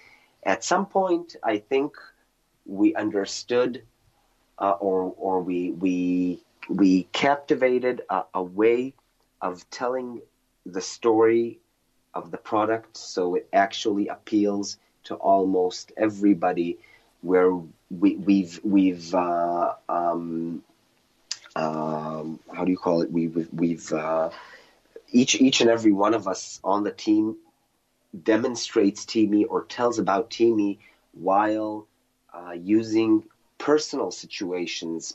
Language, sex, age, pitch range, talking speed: English, male, 30-49, 90-115 Hz, 115 wpm